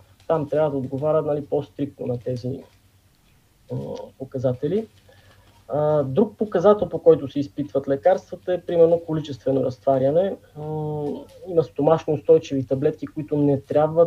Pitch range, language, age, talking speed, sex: 135-160 Hz, Bulgarian, 20-39, 130 wpm, male